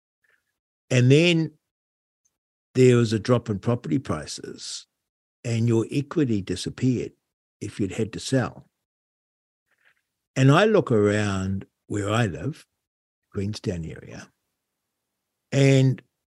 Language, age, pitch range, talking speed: English, 60-79, 95-130 Hz, 105 wpm